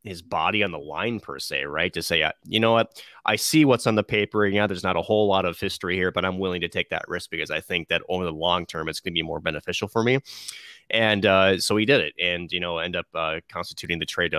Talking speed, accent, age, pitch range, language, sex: 285 wpm, American, 30-49, 90-110 Hz, English, male